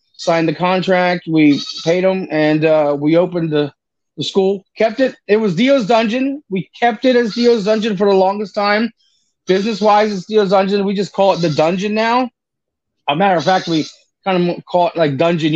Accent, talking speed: American, 205 wpm